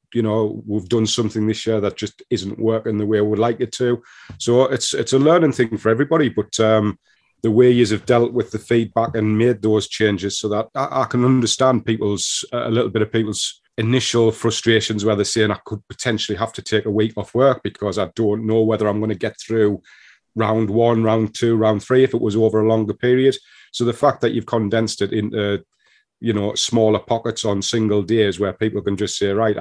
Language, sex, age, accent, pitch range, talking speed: English, male, 40-59, British, 105-115 Hz, 225 wpm